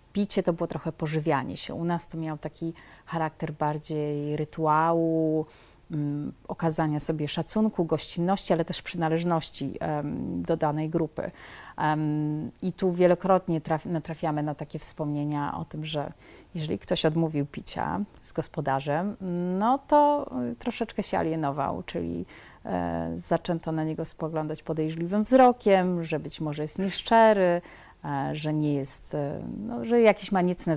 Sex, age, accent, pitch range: female, 30-49, native, 155-185 Hz